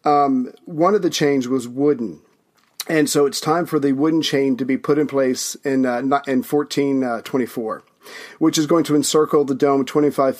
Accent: American